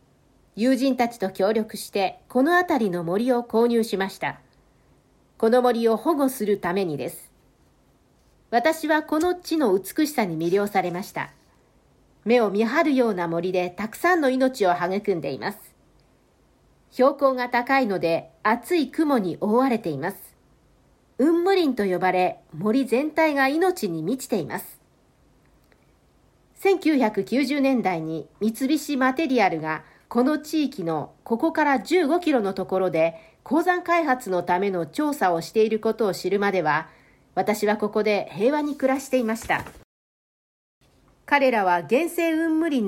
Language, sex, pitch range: Japanese, female, 185-275 Hz